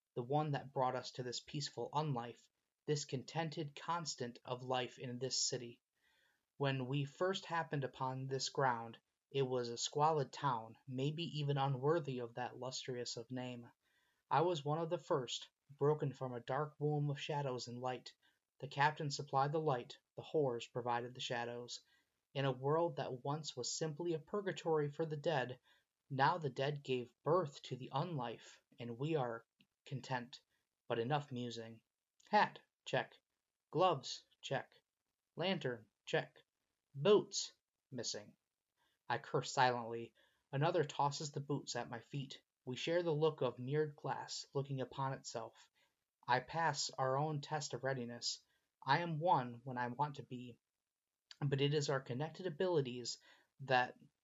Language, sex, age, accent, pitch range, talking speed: English, male, 30-49, American, 125-150 Hz, 155 wpm